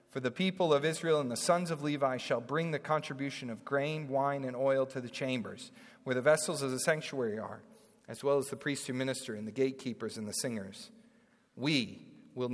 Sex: male